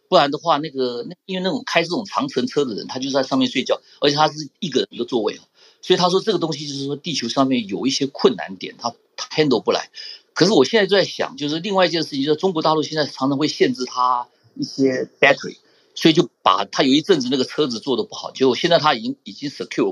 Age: 50-69